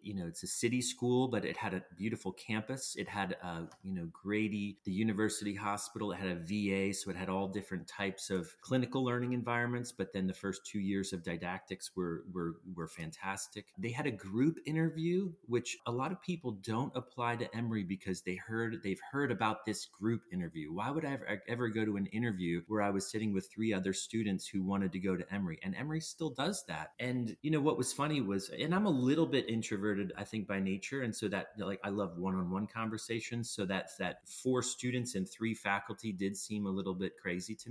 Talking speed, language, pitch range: 220 wpm, English, 95-125 Hz